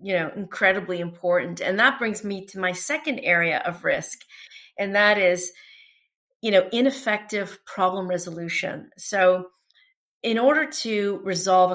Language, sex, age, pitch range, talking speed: English, female, 40-59, 180-220 Hz, 140 wpm